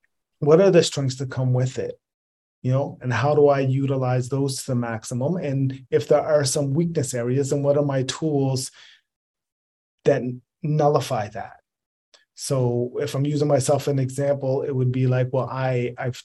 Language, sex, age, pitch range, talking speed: English, male, 30-49, 125-145 Hz, 180 wpm